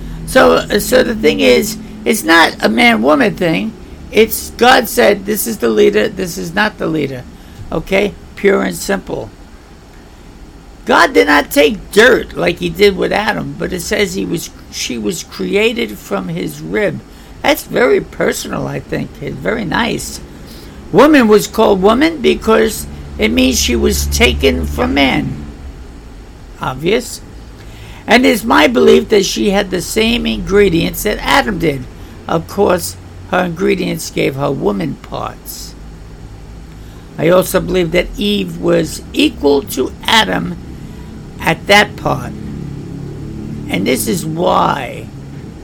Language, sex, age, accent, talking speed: English, male, 60-79, American, 140 wpm